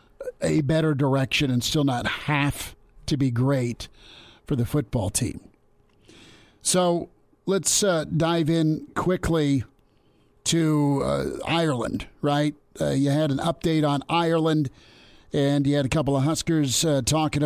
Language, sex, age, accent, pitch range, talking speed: English, male, 50-69, American, 135-160 Hz, 135 wpm